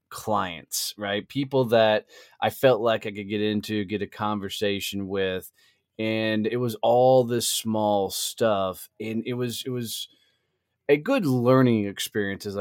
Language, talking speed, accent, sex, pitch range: English, 150 wpm, American, male, 95-115 Hz